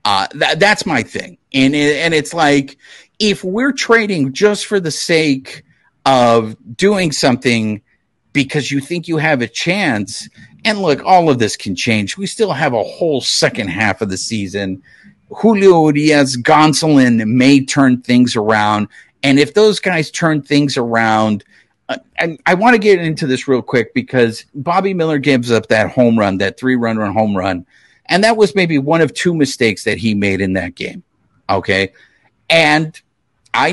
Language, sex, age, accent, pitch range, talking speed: English, male, 50-69, American, 115-170 Hz, 175 wpm